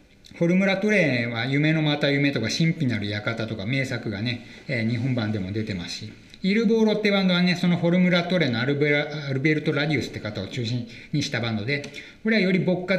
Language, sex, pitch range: Japanese, male, 115-165 Hz